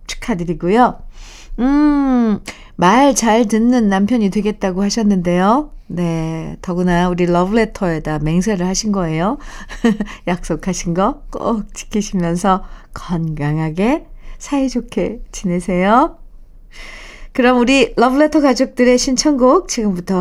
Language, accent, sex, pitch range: Korean, native, female, 175-245 Hz